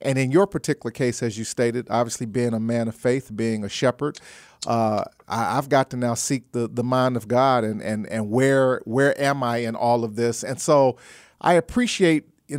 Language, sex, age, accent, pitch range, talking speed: English, male, 40-59, American, 120-145 Hz, 210 wpm